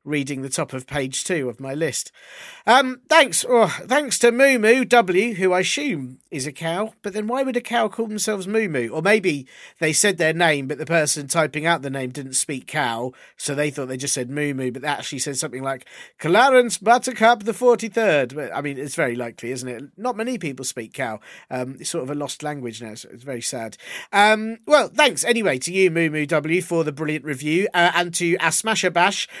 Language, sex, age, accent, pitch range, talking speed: English, male, 40-59, British, 145-230 Hz, 220 wpm